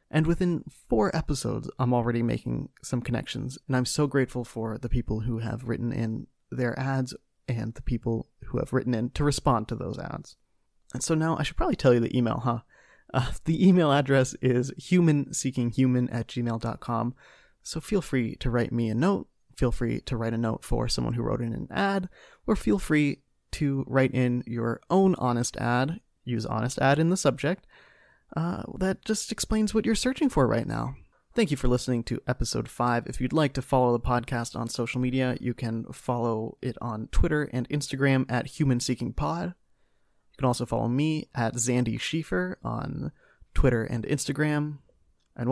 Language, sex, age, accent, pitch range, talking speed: English, male, 30-49, American, 120-145 Hz, 185 wpm